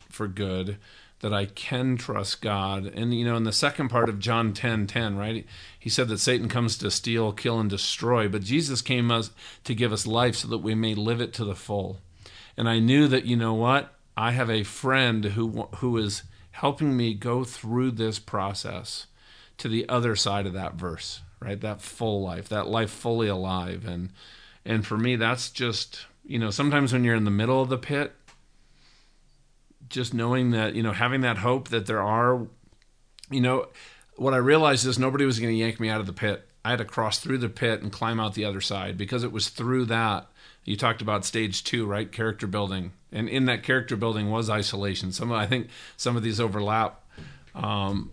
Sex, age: male, 40-59